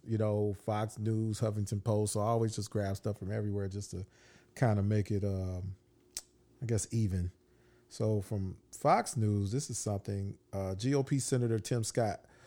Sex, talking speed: male, 175 wpm